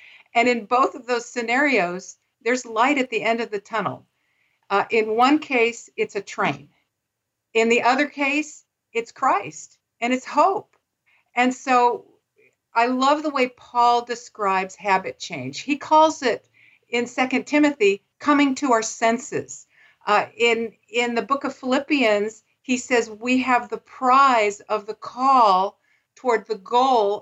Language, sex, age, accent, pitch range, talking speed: English, female, 50-69, American, 195-265 Hz, 150 wpm